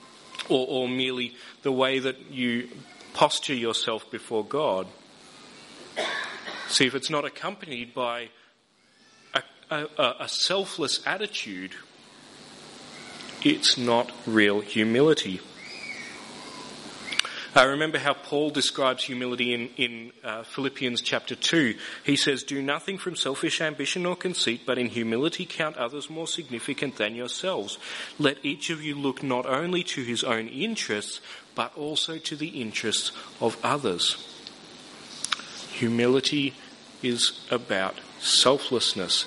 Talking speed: 120 wpm